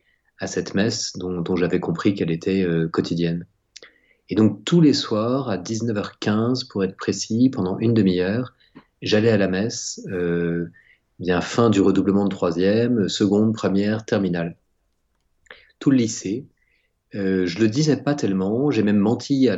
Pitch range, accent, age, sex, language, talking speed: 90-110 Hz, French, 30-49, male, French, 160 wpm